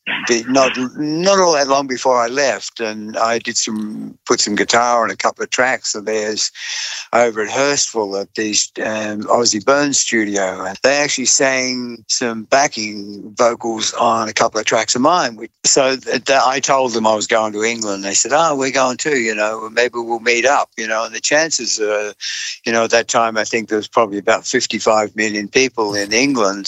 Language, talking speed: English, 200 wpm